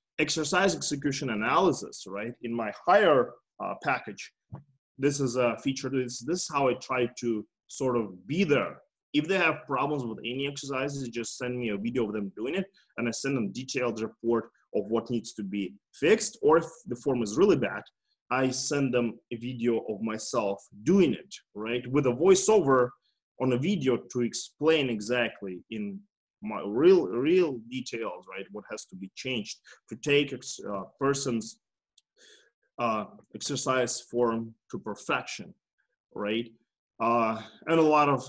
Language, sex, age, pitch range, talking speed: English, male, 20-39, 115-140 Hz, 165 wpm